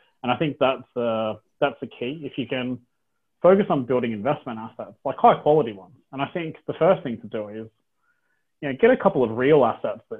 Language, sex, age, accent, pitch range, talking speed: English, male, 20-39, Australian, 110-135 Hz, 230 wpm